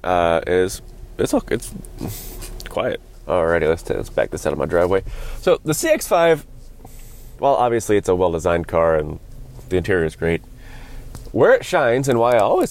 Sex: male